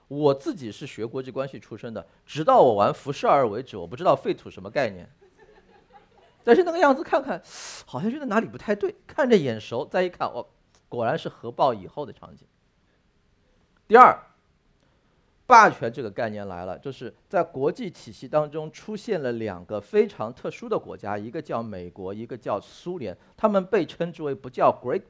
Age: 50-69